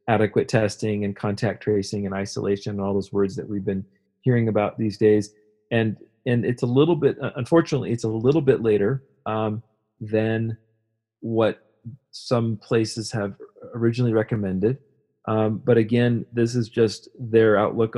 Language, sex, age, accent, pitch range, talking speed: English, male, 40-59, American, 100-115 Hz, 155 wpm